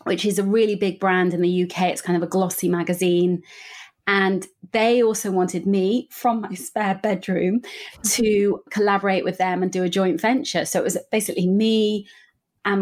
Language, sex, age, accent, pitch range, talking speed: English, female, 30-49, British, 185-220 Hz, 185 wpm